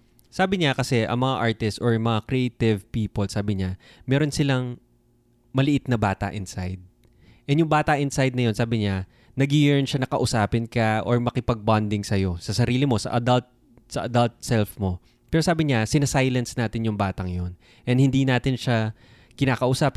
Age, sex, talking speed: 20-39, male, 170 wpm